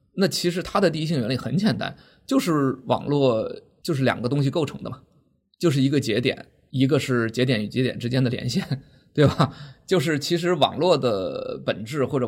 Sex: male